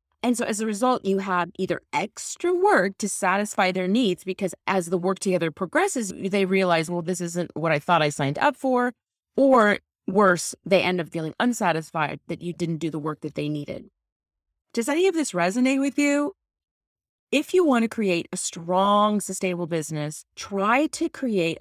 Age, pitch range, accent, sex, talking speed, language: 30-49, 165-225 Hz, American, female, 185 wpm, English